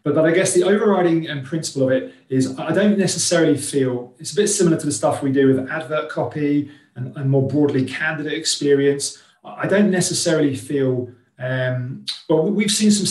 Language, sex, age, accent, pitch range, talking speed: English, male, 30-49, British, 130-165 Hz, 190 wpm